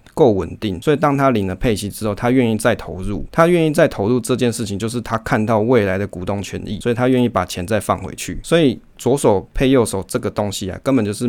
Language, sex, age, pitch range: Chinese, male, 20-39, 95-125 Hz